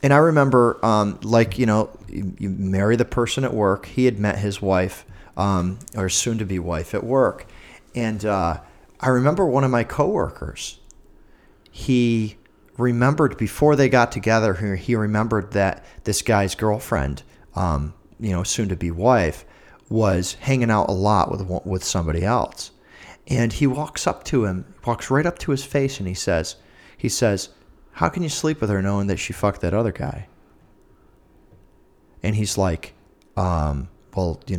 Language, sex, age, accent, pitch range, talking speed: English, male, 40-59, American, 90-120 Hz, 165 wpm